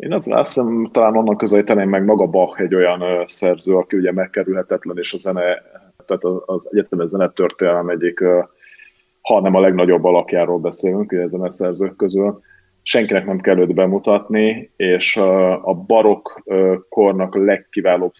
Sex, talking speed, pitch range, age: male, 140 wpm, 90-100 Hz, 30-49